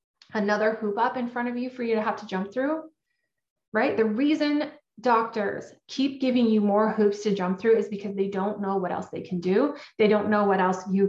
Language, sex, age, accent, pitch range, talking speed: English, female, 30-49, American, 195-235 Hz, 225 wpm